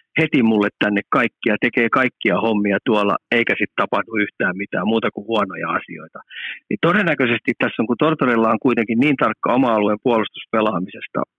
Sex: male